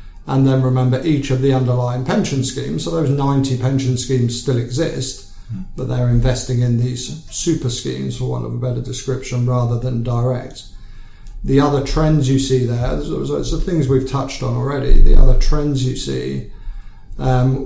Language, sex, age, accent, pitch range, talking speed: English, male, 50-69, British, 120-130 Hz, 175 wpm